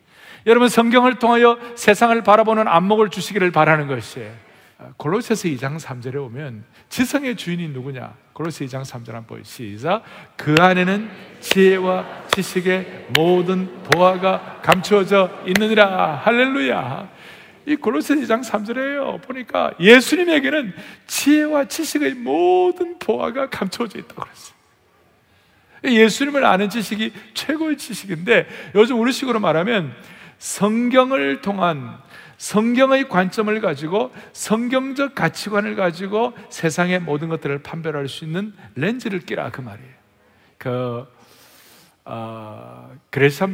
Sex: male